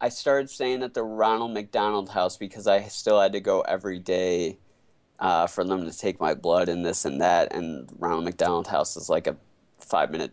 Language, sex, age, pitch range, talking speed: English, male, 20-39, 95-110 Hz, 205 wpm